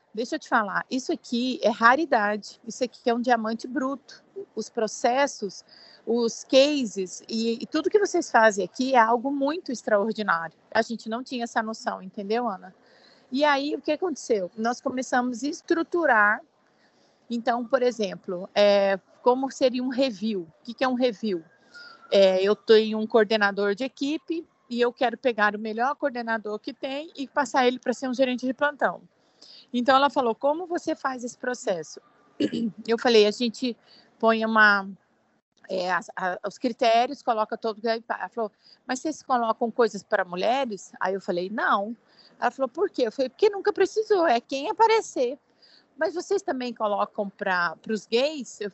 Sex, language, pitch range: female, Portuguese, 215-270 Hz